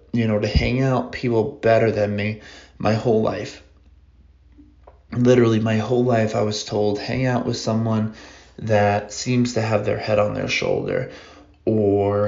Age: 20-39